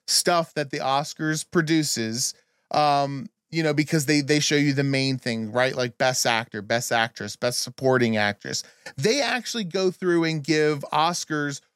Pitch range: 140-195 Hz